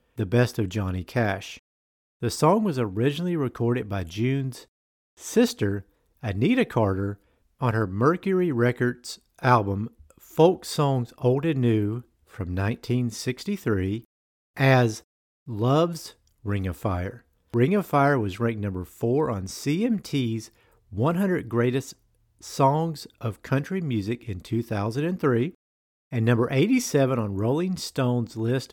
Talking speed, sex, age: 115 wpm, male, 50-69